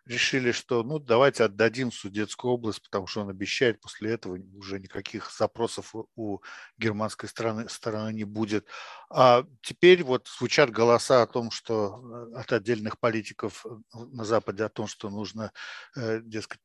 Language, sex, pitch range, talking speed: Russian, male, 110-125 Hz, 150 wpm